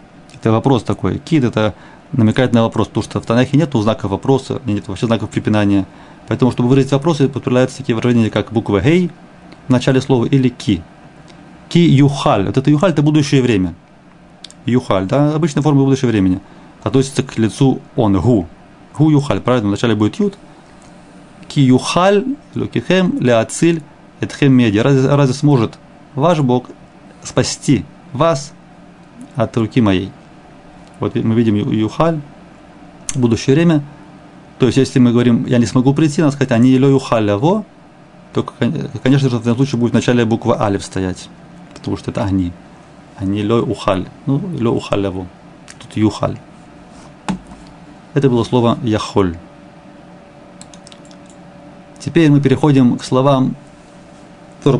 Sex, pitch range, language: male, 110-145 Hz, Russian